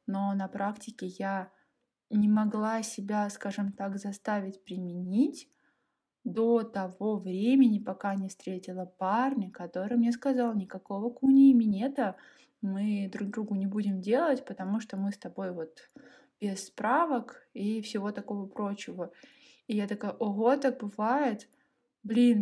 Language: Russian